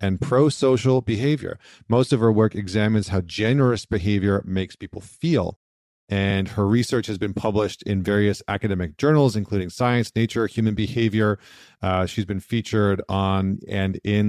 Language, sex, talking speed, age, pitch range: English, male, 150 wpm, 40-59, 95-115 Hz